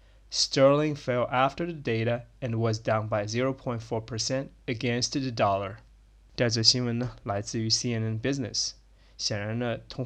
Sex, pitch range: male, 110-125 Hz